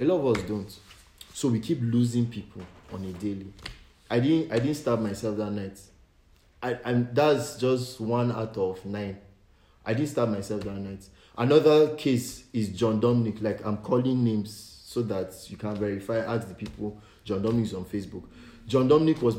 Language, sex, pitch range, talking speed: English, male, 100-135 Hz, 185 wpm